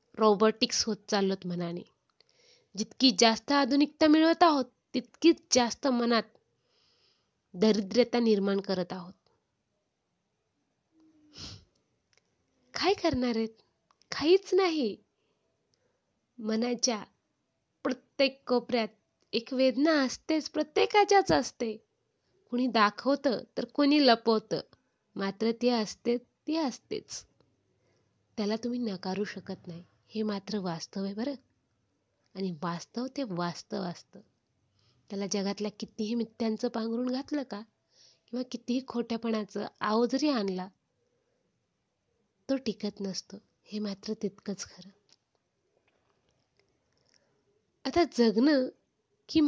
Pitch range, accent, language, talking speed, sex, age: 200-270 Hz, native, Marathi, 95 wpm, female, 20-39